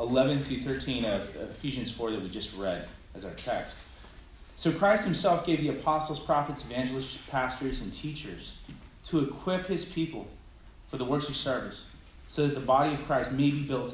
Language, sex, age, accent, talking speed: English, male, 30-49, American, 170 wpm